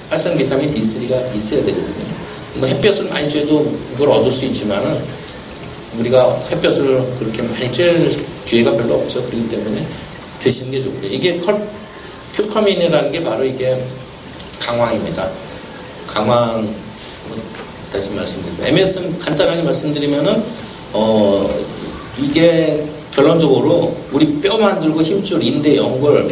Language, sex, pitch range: Korean, male, 130-165 Hz